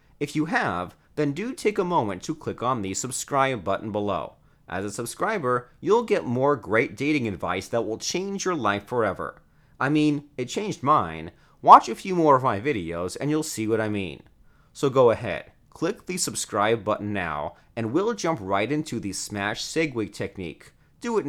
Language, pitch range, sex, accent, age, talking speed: English, 105-155 Hz, male, American, 30-49, 195 wpm